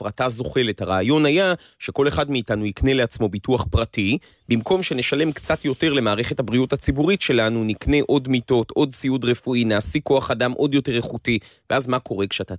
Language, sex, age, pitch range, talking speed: Hebrew, male, 30-49, 110-140 Hz, 165 wpm